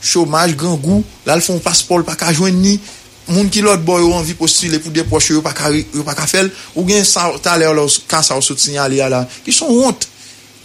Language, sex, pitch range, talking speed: English, male, 140-185 Hz, 120 wpm